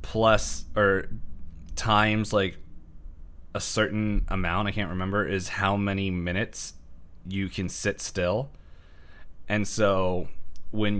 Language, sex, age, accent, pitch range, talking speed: English, male, 20-39, American, 80-100 Hz, 115 wpm